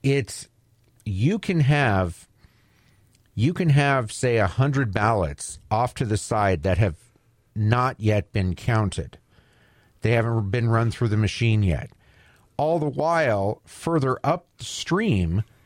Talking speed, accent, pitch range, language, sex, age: 130 wpm, American, 100-130 Hz, English, male, 50-69